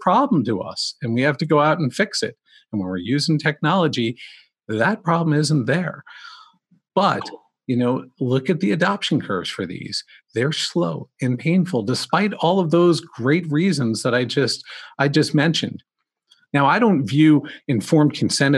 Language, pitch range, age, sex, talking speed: English, 130-175 Hz, 50-69, male, 170 wpm